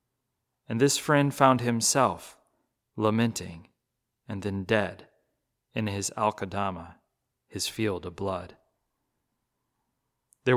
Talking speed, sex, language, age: 95 wpm, male, English, 30-49